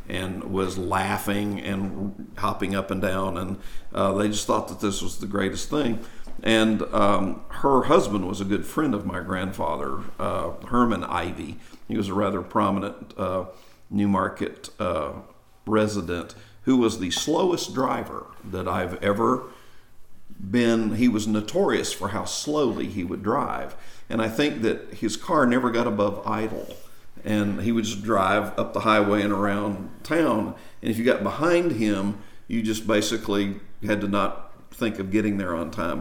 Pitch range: 100-110 Hz